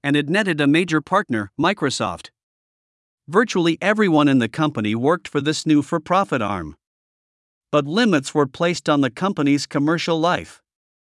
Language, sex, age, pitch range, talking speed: Vietnamese, male, 50-69, 130-170 Hz, 145 wpm